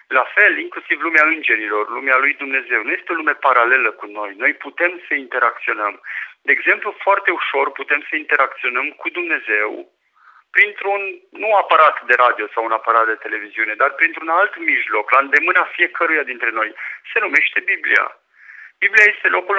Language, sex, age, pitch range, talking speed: Romanian, male, 50-69, 155-210 Hz, 160 wpm